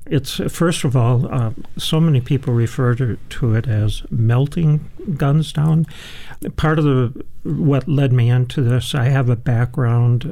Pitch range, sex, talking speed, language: 120-140 Hz, male, 165 wpm, English